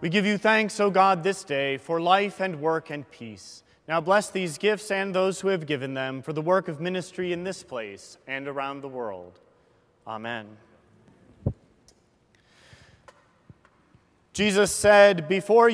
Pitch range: 135-190 Hz